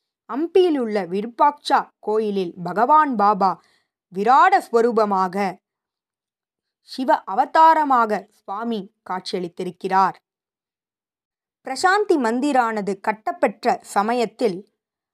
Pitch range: 200-265 Hz